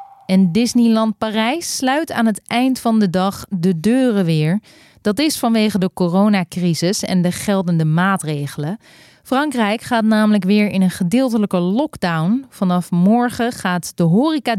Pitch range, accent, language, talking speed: 180-230 Hz, Dutch, Dutch, 145 wpm